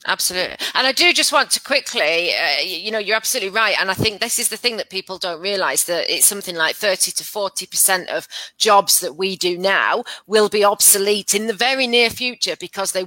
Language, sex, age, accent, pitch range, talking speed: English, female, 30-49, British, 180-225 Hz, 220 wpm